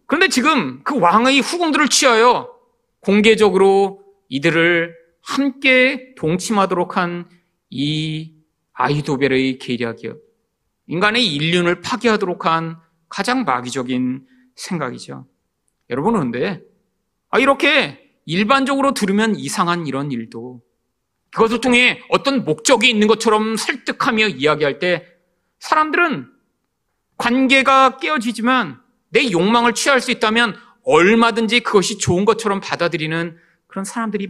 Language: Korean